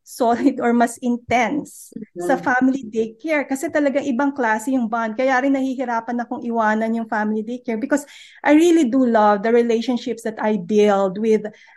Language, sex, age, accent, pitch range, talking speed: Filipino, female, 20-39, native, 220-265 Hz, 170 wpm